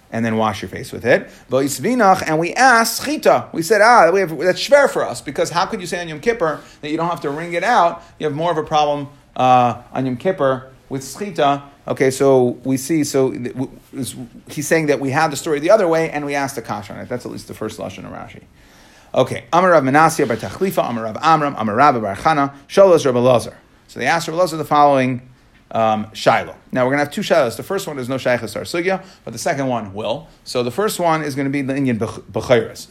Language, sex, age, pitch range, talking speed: English, male, 30-49, 120-155 Hz, 210 wpm